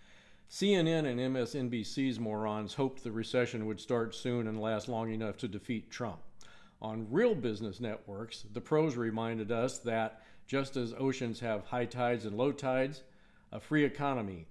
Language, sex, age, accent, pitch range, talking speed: English, male, 50-69, American, 110-135 Hz, 155 wpm